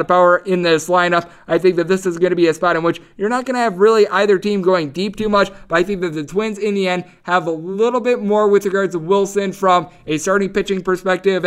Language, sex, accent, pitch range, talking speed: English, male, American, 170-225 Hz, 270 wpm